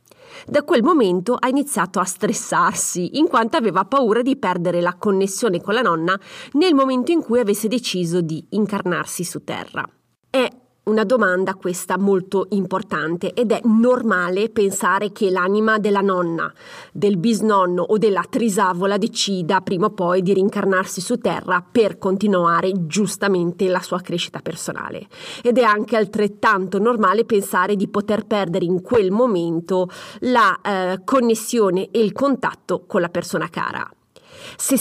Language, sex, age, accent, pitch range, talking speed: Italian, female, 30-49, native, 185-230 Hz, 145 wpm